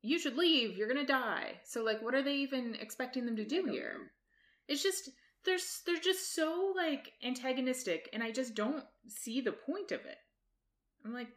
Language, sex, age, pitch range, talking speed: English, female, 20-39, 170-285 Hz, 195 wpm